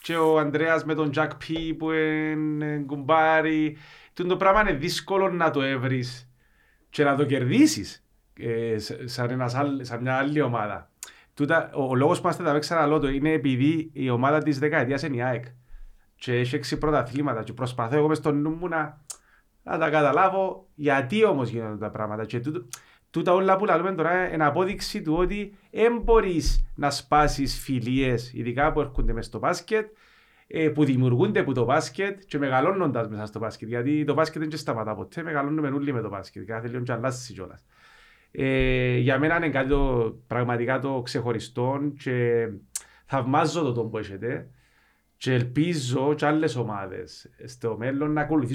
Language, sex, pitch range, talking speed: Greek, male, 125-160 Hz, 140 wpm